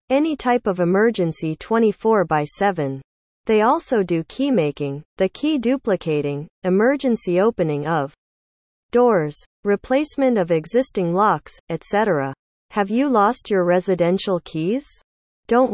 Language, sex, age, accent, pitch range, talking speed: English, female, 30-49, American, 165-230 Hz, 120 wpm